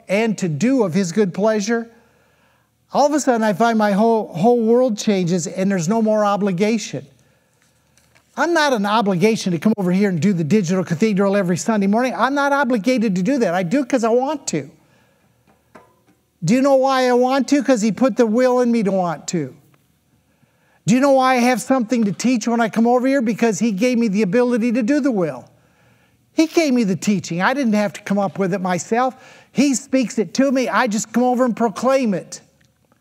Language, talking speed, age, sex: English, 215 wpm, 50-69, male